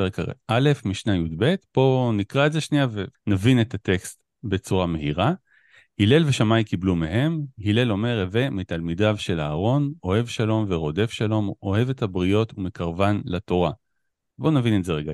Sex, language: male, Hebrew